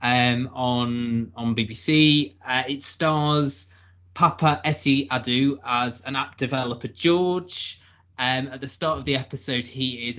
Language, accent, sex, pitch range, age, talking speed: English, British, male, 115-140 Hz, 20-39, 140 wpm